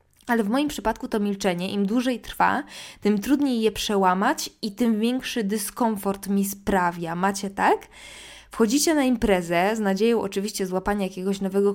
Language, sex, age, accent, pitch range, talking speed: Polish, female, 20-39, native, 180-220 Hz, 155 wpm